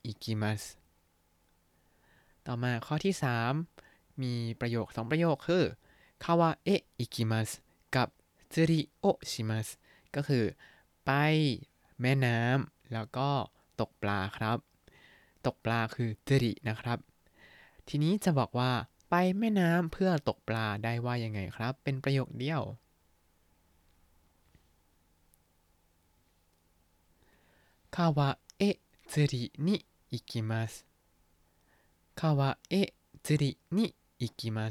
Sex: male